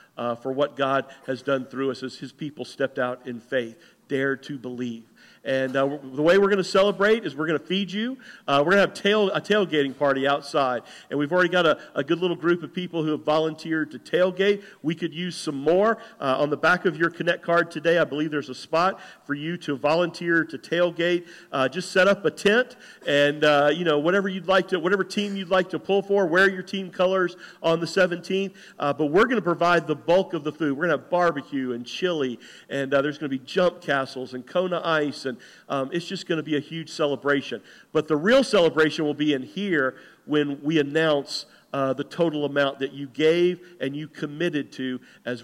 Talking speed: 230 wpm